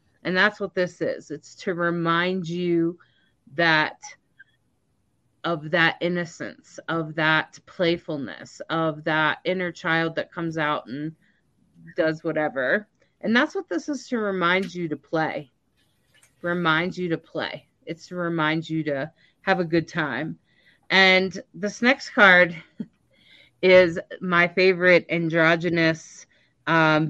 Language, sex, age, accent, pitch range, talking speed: English, female, 30-49, American, 155-180 Hz, 130 wpm